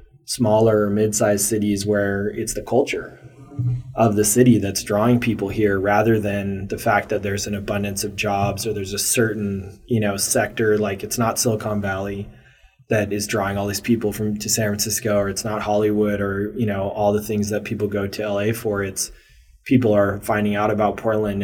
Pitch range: 100-115 Hz